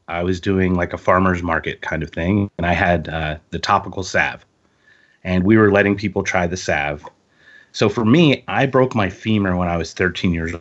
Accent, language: American, English